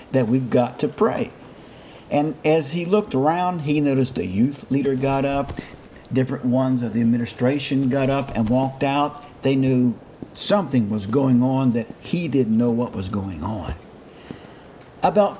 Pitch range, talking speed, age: 110-140 Hz, 165 wpm, 50-69